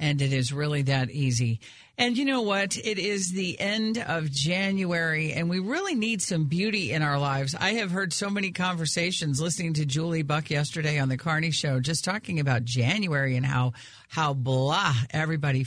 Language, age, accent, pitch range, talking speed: English, 50-69, American, 135-185 Hz, 190 wpm